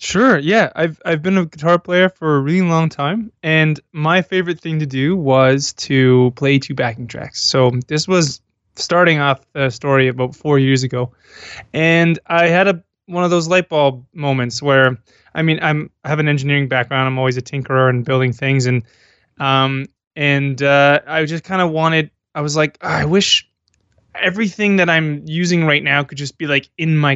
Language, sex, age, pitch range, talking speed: English, male, 20-39, 135-160 Hz, 195 wpm